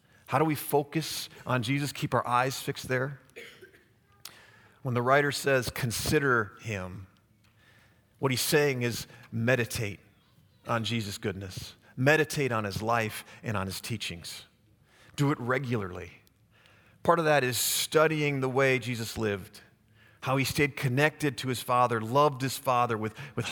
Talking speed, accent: 145 wpm, American